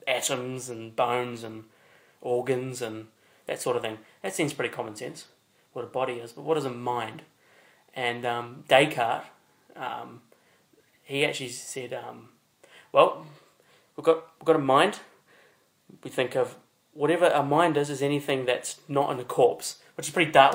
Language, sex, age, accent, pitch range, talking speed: English, male, 30-49, Australian, 125-155 Hz, 170 wpm